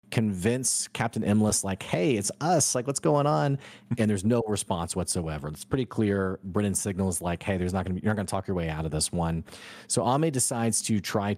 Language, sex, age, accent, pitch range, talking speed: English, male, 30-49, American, 95-115 Hz, 220 wpm